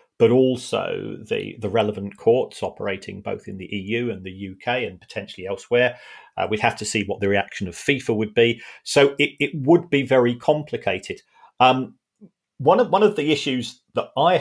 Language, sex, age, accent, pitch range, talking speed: English, male, 40-59, British, 105-130 Hz, 185 wpm